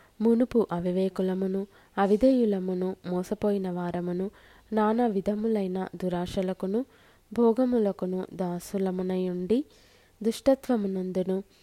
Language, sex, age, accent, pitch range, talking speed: Telugu, female, 20-39, native, 180-210 Hz, 55 wpm